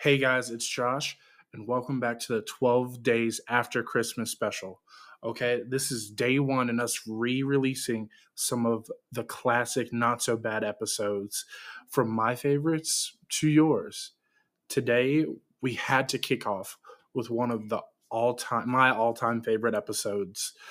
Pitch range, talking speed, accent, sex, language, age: 115-135 Hz, 140 wpm, American, male, English, 20-39